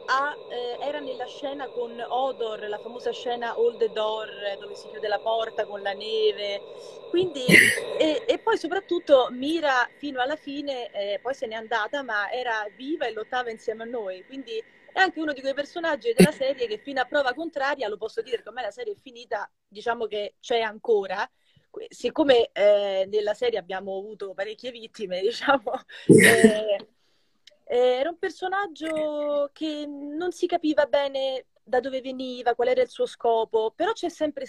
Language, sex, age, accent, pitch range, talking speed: Italian, female, 30-49, native, 215-320 Hz, 170 wpm